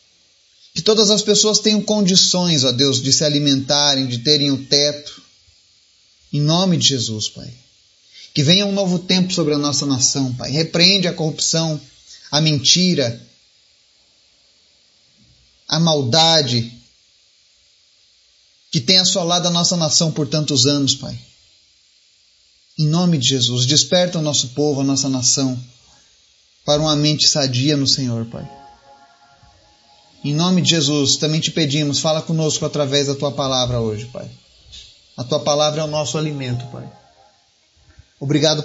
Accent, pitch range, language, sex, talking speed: Brazilian, 130-170 Hz, Portuguese, male, 140 wpm